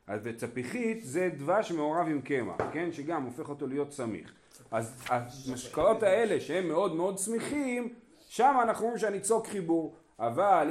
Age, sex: 40-59, male